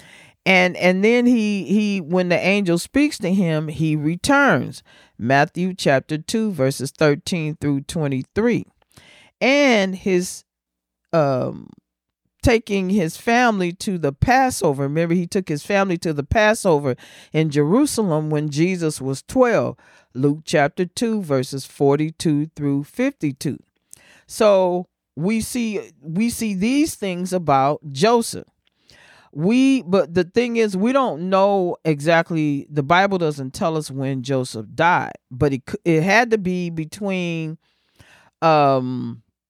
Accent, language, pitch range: American, English, 140-190 Hz